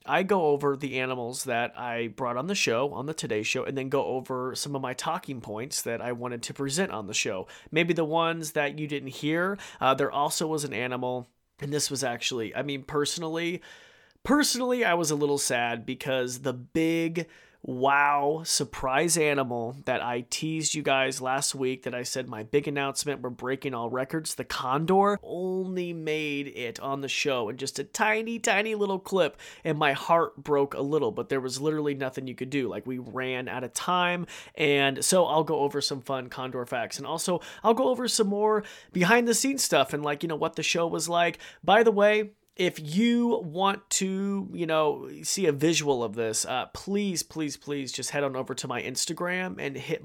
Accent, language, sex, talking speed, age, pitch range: American, English, male, 205 wpm, 30-49, 130-170 Hz